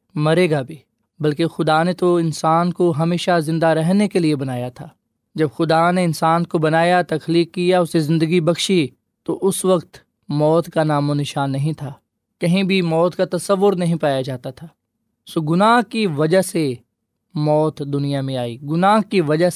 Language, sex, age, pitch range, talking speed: Urdu, male, 20-39, 145-175 Hz, 180 wpm